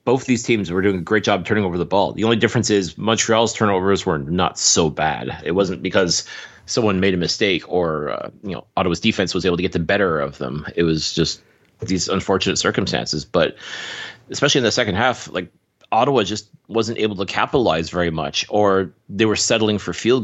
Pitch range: 90-115 Hz